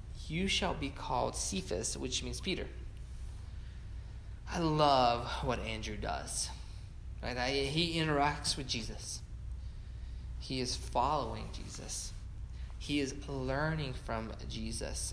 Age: 20-39